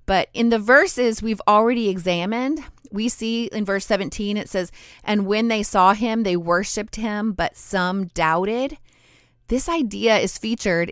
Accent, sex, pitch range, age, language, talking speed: American, female, 175-230 Hz, 30-49, English, 160 wpm